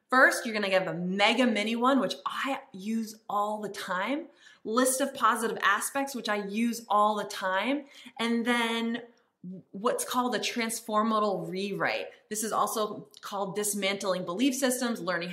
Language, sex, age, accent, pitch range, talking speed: English, female, 20-39, American, 200-255 Hz, 155 wpm